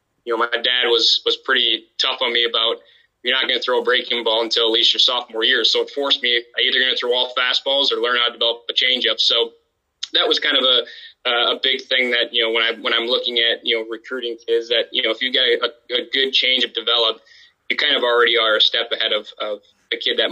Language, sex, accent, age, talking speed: English, male, American, 20-39, 265 wpm